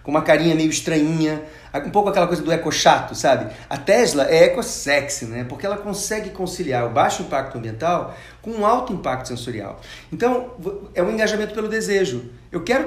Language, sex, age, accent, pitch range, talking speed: Portuguese, male, 40-59, Brazilian, 125-180 Hz, 175 wpm